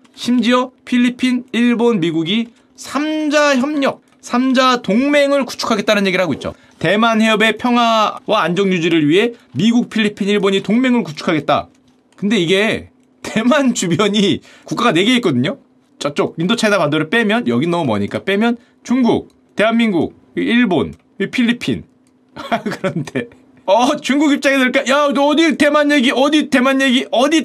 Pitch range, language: 190-260 Hz, Korean